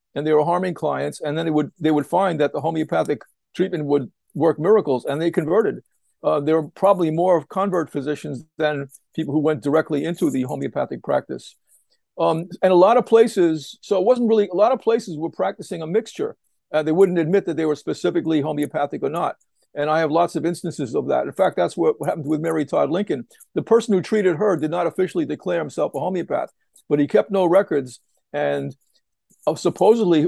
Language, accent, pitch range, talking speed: English, American, 150-190 Hz, 205 wpm